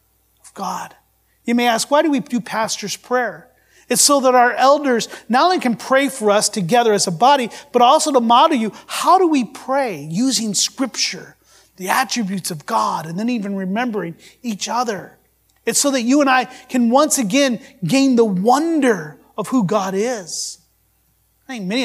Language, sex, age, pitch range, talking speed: English, male, 30-49, 195-250 Hz, 180 wpm